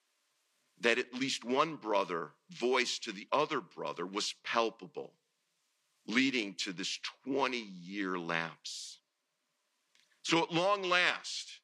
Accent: American